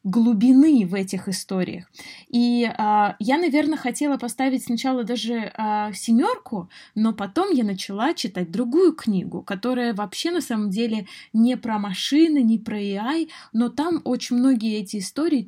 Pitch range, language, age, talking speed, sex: 210-260 Hz, Russian, 20-39, 145 wpm, female